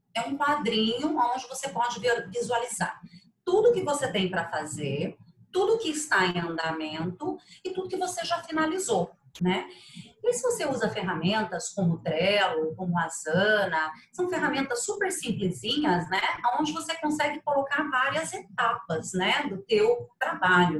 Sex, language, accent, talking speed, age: female, Portuguese, Brazilian, 150 wpm, 40-59